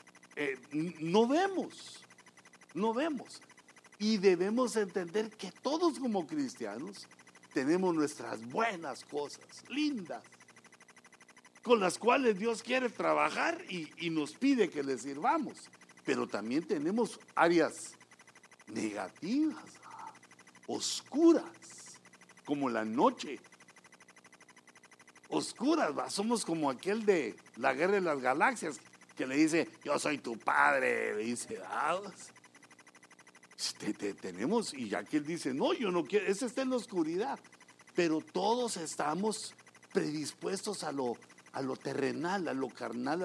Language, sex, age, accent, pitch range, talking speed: English, male, 60-79, Mexican, 170-255 Hz, 120 wpm